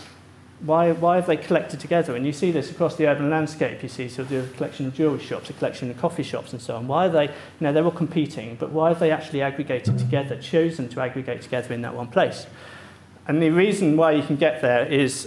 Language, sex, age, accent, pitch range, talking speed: English, male, 40-59, British, 125-155 Hz, 245 wpm